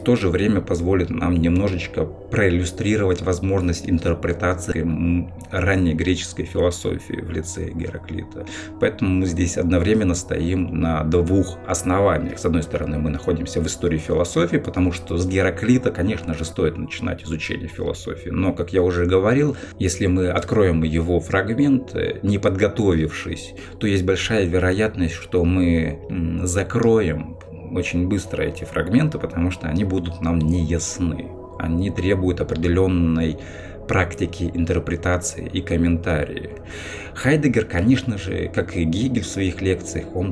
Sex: male